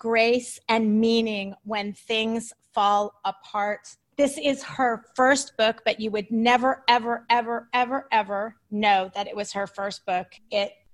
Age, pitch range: 30-49, 210-250 Hz